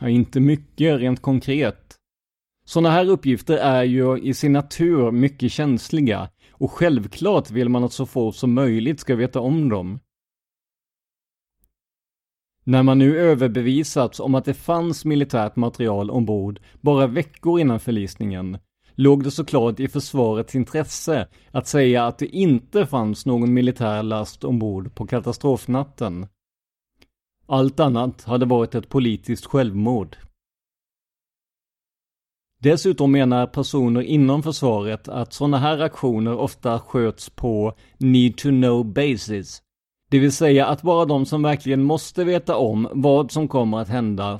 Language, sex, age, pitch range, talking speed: Swedish, male, 30-49, 115-145 Hz, 130 wpm